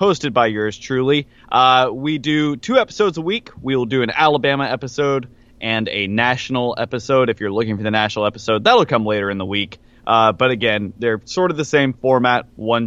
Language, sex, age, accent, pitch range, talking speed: English, male, 20-39, American, 115-160 Hz, 200 wpm